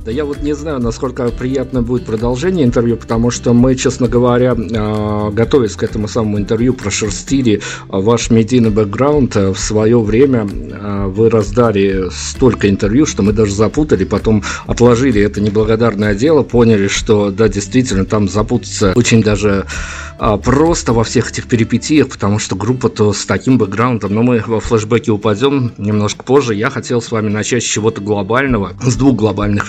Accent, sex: native, male